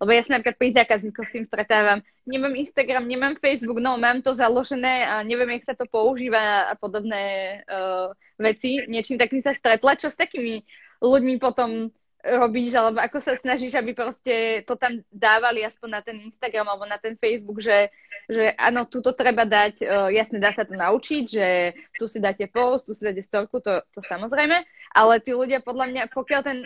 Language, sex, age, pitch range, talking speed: Slovak, female, 20-39, 210-255 Hz, 190 wpm